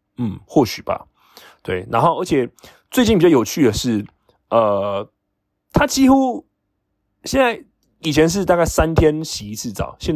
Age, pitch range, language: 20-39, 105-130 Hz, Chinese